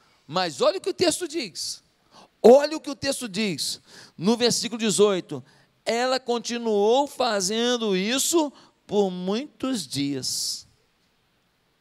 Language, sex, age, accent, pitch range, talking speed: Portuguese, male, 50-69, Brazilian, 195-275 Hz, 115 wpm